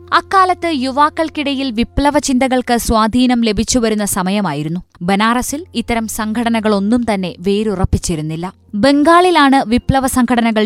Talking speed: 80 wpm